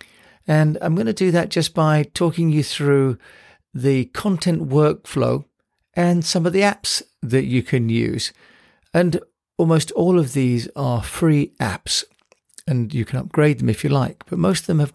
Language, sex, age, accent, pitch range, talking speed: English, male, 50-69, British, 120-160 Hz, 175 wpm